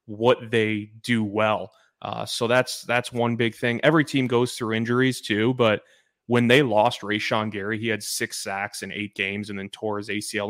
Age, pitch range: 20-39, 105-120 Hz